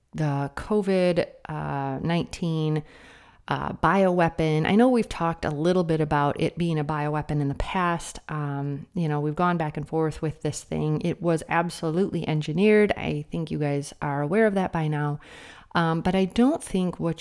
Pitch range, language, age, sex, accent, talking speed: 150-185 Hz, English, 30-49, female, American, 175 wpm